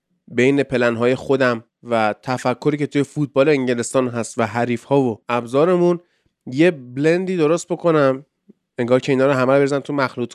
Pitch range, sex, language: 120-155 Hz, male, Persian